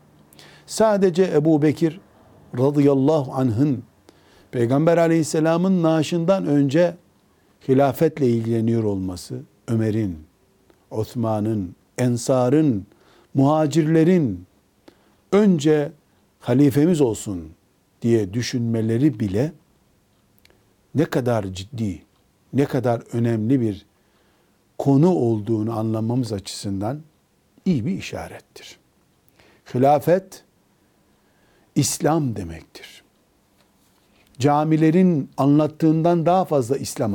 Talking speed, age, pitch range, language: 70 wpm, 60-79, 100-150 Hz, Turkish